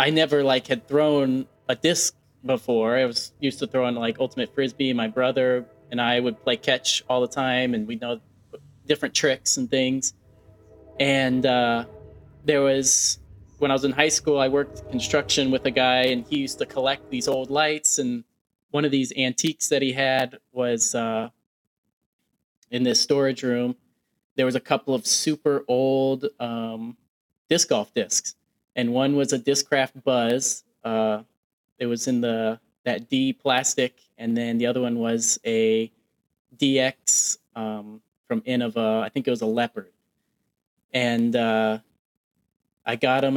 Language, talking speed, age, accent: English, 165 wpm, 20-39, American